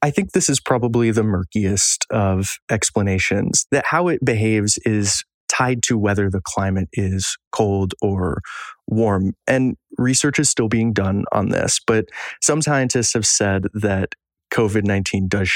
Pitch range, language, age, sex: 100-120 Hz, English, 20-39, male